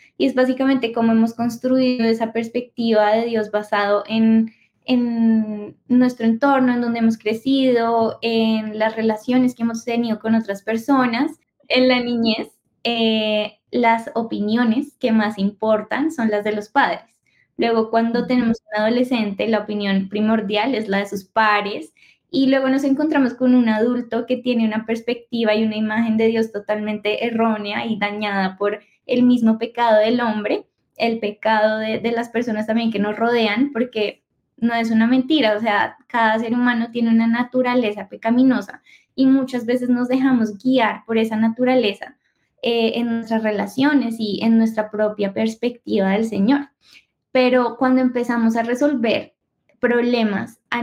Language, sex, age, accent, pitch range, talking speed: English, female, 10-29, Colombian, 215-245 Hz, 155 wpm